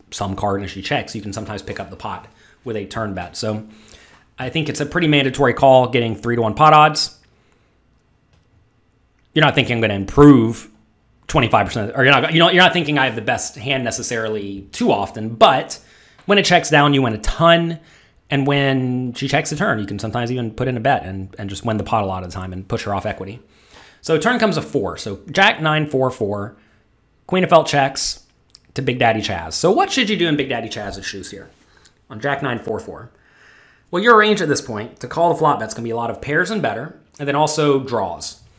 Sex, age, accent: male, 30-49, American